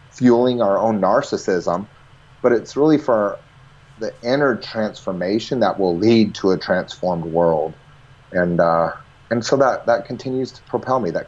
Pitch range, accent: 105-130 Hz, American